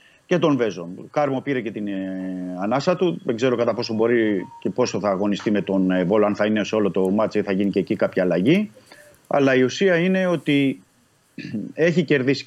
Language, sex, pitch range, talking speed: Greek, male, 120-155 Hz, 215 wpm